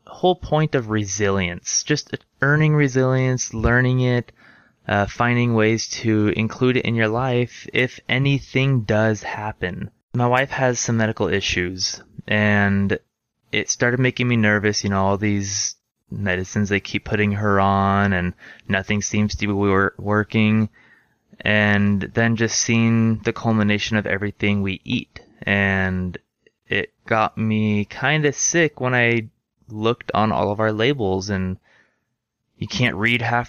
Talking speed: 145 wpm